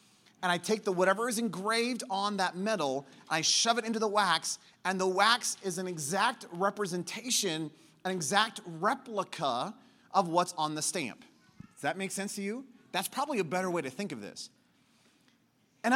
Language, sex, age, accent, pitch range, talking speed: English, male, 30-49, American, 190-250 Hz, 175 wpm